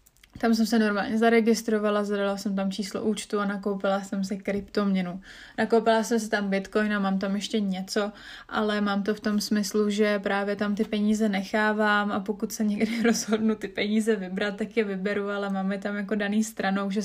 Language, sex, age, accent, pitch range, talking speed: Czech, female, 20-39, native, 200-220 Hz, 195 wpm